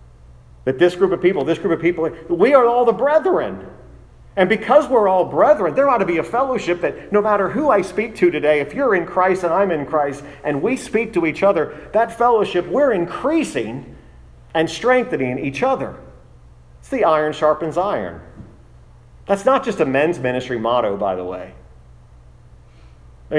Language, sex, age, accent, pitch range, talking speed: English, male, 40-59, American, 135-190 Hz, 180 wpm